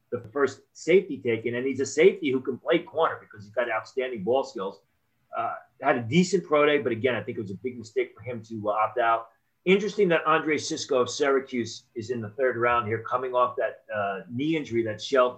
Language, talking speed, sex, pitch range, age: English, 225 wpm, male, 115-155 Hz, 30-49